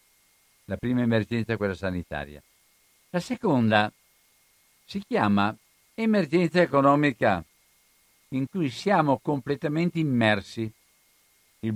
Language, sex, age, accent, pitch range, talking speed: Italian, male, 60-79, native, 105-150 Hz, 90 wpm